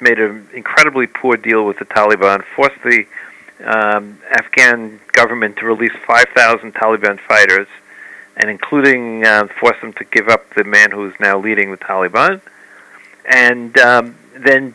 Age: 50-69